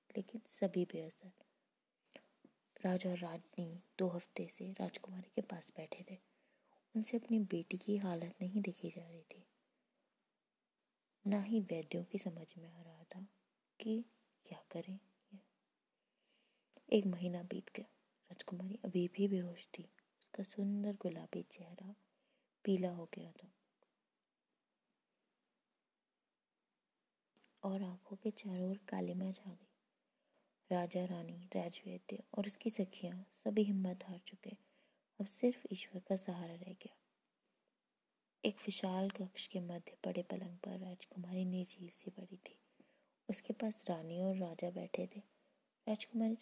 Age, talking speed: 20-39, 125 wpm